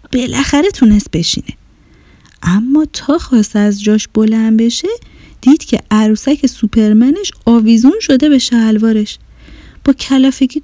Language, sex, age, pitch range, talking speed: Persian, female, 30-49, 225-320 Hz, 115 wpm